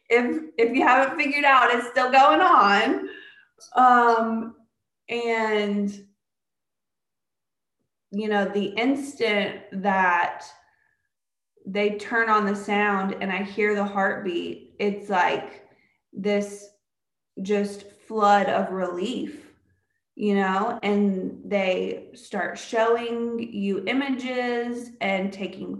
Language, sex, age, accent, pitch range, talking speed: English, female, 20-39, American, 195-235 Hz, 100 wpm